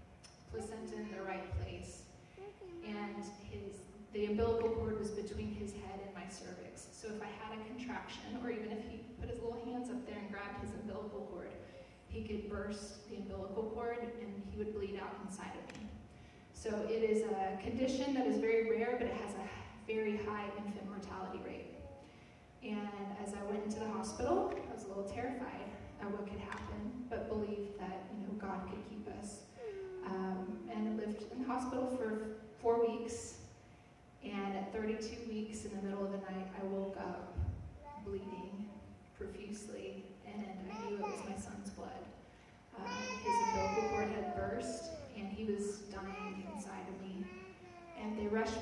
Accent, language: American, English